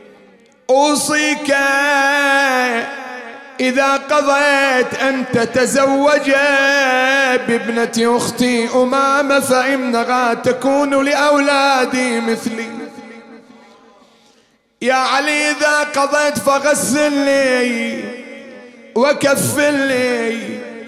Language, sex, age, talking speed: English, male, 30-49, 50 wpm